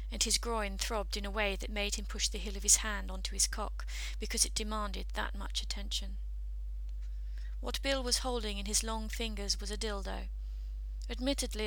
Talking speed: 190 wpm